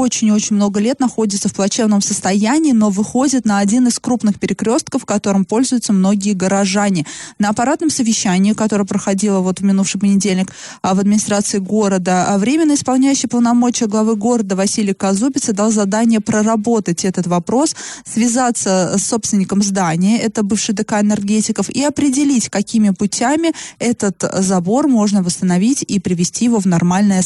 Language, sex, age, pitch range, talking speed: Russian, female, 20-39, 195-235 Hz, 145 wpm